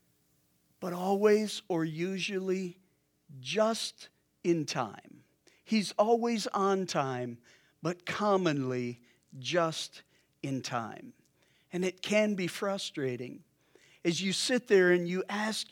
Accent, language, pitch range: American, English, 180-225 Hz